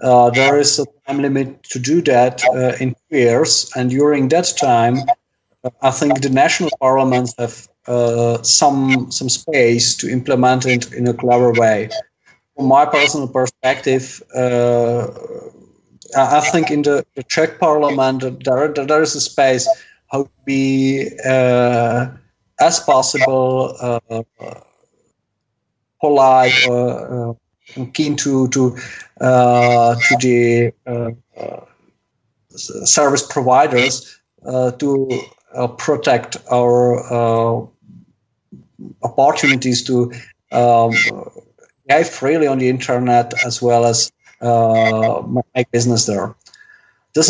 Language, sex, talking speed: Dutch, male, 120 wpm